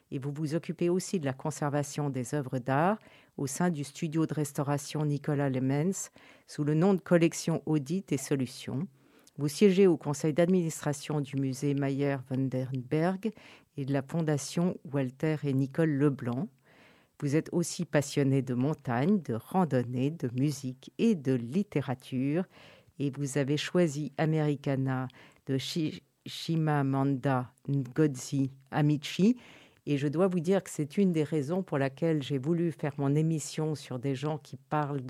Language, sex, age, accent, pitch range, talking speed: French, female, 50-69, French, 140-165 Hz, 150 wpm